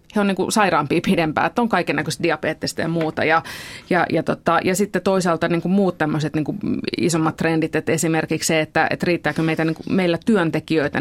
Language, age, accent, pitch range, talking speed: Finnish, 30-49, native, 155-170 Hz, 185 wpm